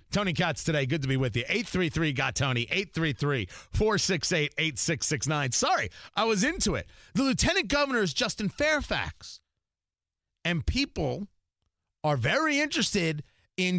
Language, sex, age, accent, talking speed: English, male, 40-59, American, 120 wpm